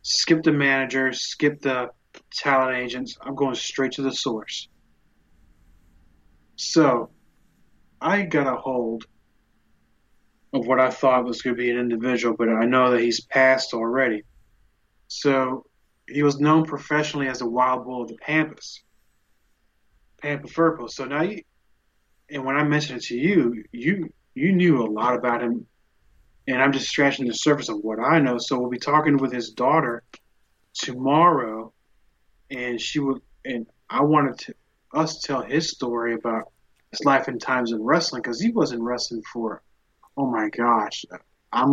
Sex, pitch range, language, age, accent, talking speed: male, 115-140 Hz, English, 30-49, American, 160 wpm